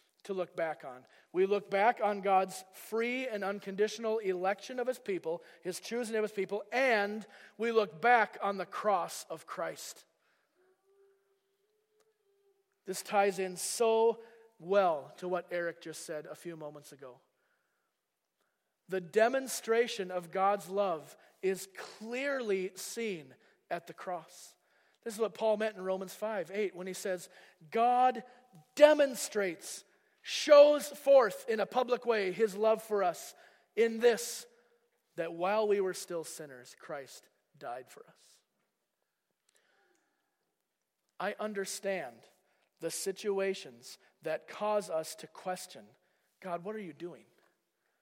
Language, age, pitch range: English, 40-59, 180-230 Hz